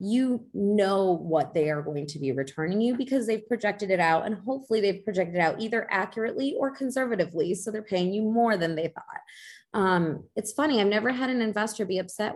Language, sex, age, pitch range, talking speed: English, female, 20-39, 165-215 Hz, 210 wpm